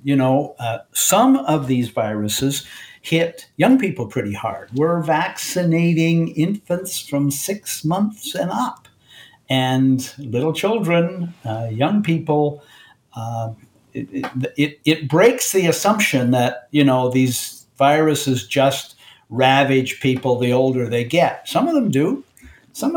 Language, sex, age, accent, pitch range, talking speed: English, male, 60-79, American, 125-170 Hz, 130 wpm